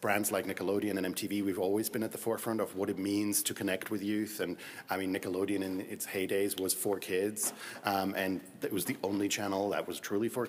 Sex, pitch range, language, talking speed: male, 100-115 Hz, English, 230 wpm